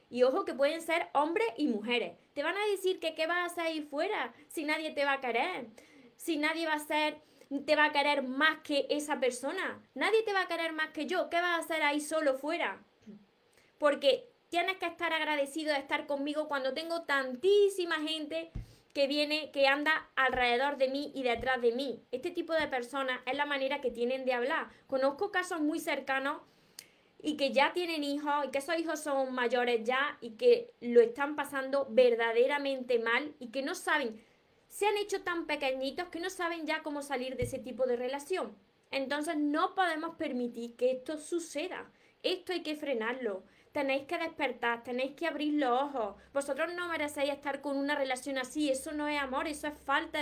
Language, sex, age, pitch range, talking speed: Spanish, female, 20-39, 265-325 Hz, 195 wpm